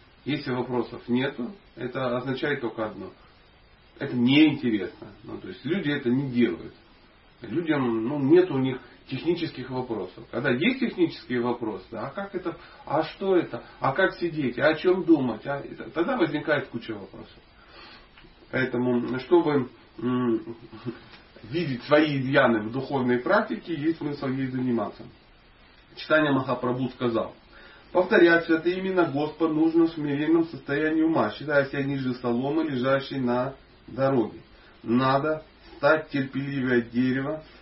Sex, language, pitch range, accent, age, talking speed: male, Russian, 120-155 Hz, native, 30-49, 130 wpm